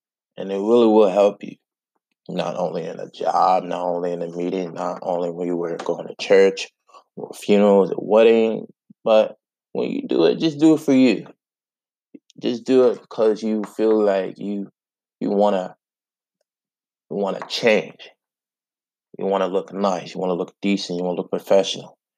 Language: English